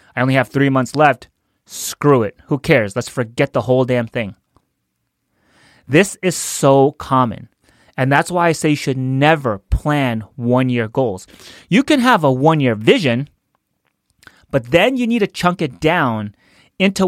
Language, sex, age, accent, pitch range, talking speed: English, male, 30-49, American, 130-170 Hz, 170 wpm